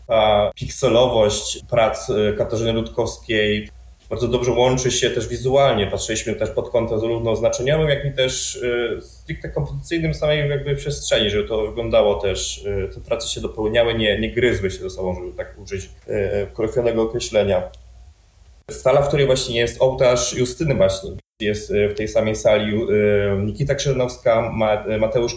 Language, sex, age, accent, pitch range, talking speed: Polish, male, 20-39, native, 105-120 Hz, 140 wpm